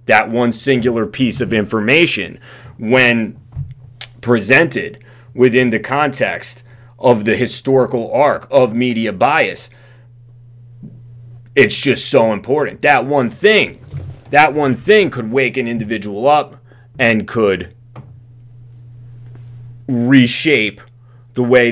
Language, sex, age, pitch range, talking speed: English, male, 30-49, 115-125 Hz, 105 wpm